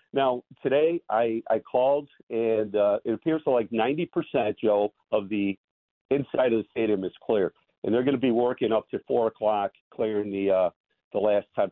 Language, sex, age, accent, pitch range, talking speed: English, male, 50-69, American, 100-120 Hz, 190 wpm